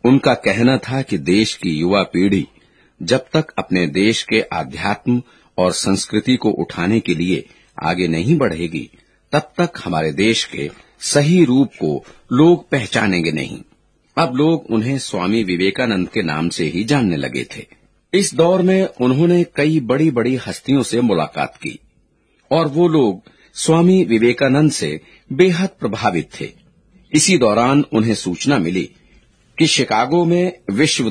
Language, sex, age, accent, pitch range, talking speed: Hindi, male, 50-69, native, 110-165 Hz, 145 wpm